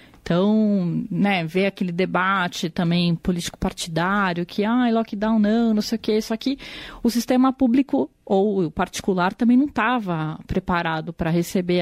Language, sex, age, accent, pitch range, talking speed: Portuguese, female, 30-49, Brazilian, 180-225 Hz, 160 wpm